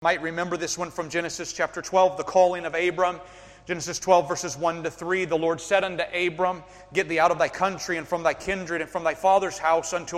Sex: male